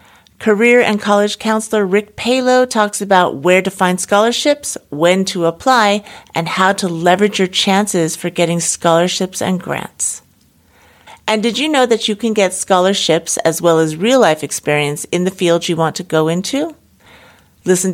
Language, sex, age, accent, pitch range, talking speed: English, female, 50-69, American, 170-220 Hz, 165 wpm